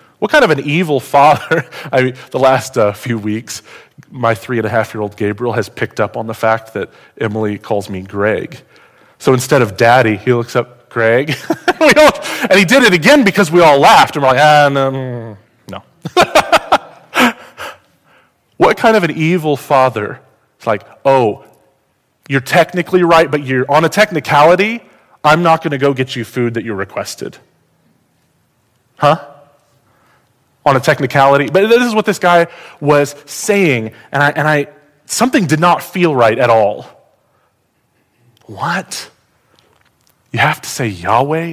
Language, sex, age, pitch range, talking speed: English, male, 30-49, 115-150 Hz, 160 wpm